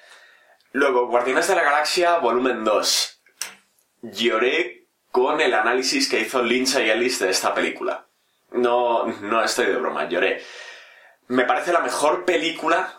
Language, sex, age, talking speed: Spanish, male, 20-39, 140 wpm